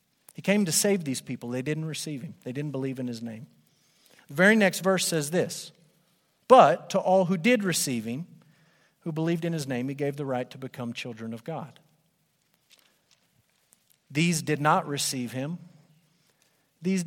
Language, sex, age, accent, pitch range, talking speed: English, male, 50-69, American, 140-185 Hz, 170 wpm